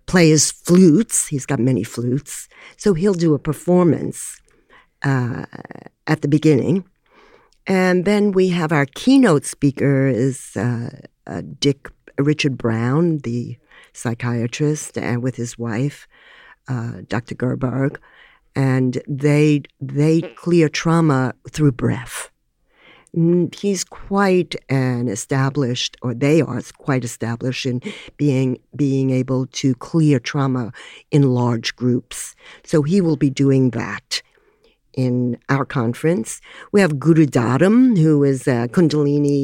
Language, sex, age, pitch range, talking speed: English, female, 60-79, 125-160 Hz, 125 wpm